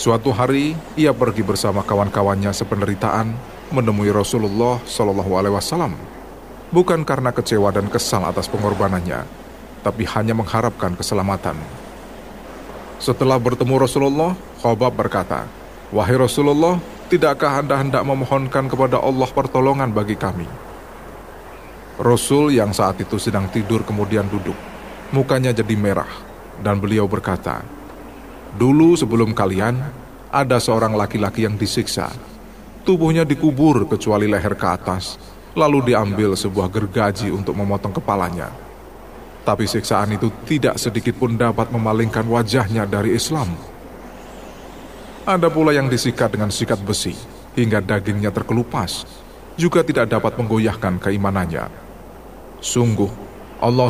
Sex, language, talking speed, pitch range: male, Indonesian, 110 wpm, 105-130 Hz